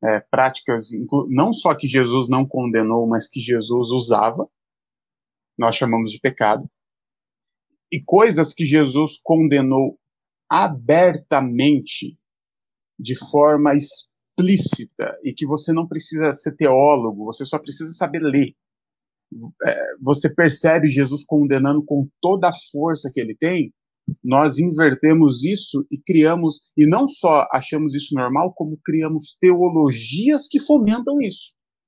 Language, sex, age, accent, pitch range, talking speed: Portuguese, male, 30-49, Brazilian, 140-180 Hz, 125 wpm